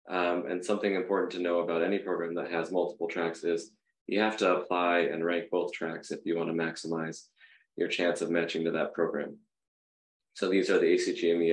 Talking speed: 200 wpm